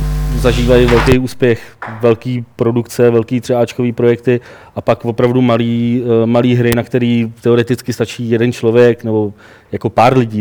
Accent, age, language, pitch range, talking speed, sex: native, 30-49, Czech, 115-125 Hz, 135 wpm, male